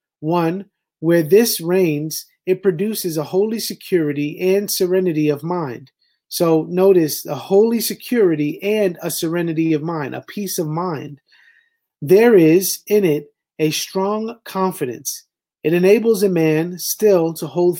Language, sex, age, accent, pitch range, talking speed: English, male, 30-49, American, 155-195 Hz, 140 wpm